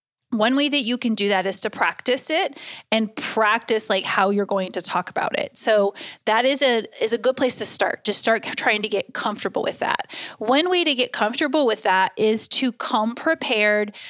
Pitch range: 205-260 Hz